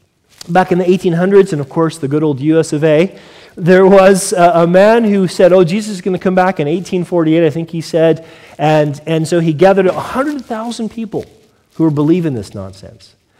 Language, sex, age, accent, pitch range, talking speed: English, male, 40-59, American, 135-195 Hz, 200 wpm